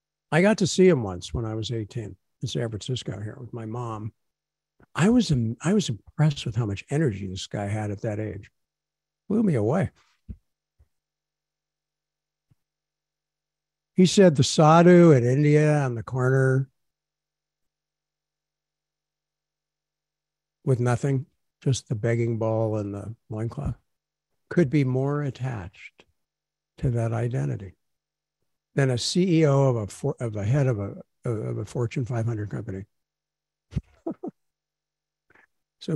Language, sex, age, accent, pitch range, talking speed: English, male, 60-79, American, 115-155 Hz, 130 wpm